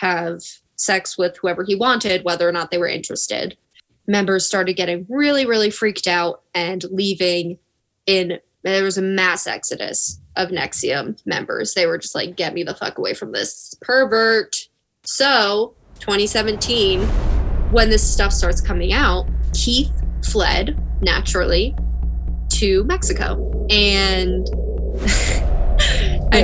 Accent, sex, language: American, female, English